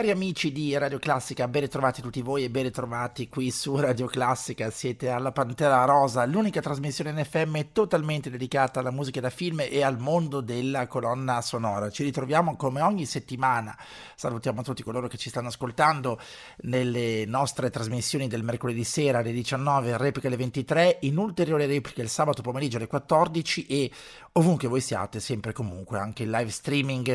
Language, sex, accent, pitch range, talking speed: Italian, male, native, 120-145 Hz, 170 wpm